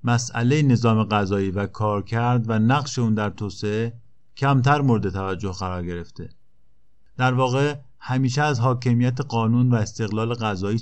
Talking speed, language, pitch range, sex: 140 wpm, Persian, 110-135 Hz, male